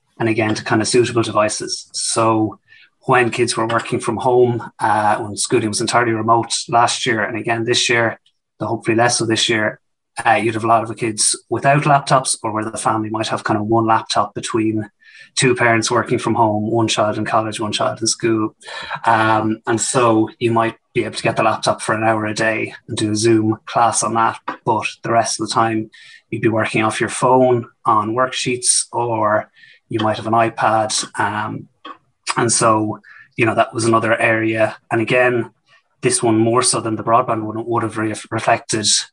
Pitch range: 110-120 Hz